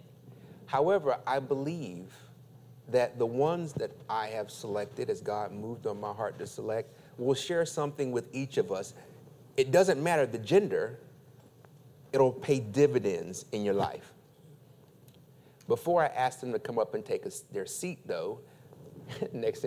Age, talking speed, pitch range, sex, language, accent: 30-49, 150 wpm, 135-170 Hz, male, English, American